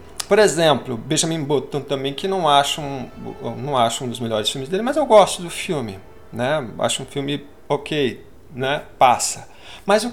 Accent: Brazilian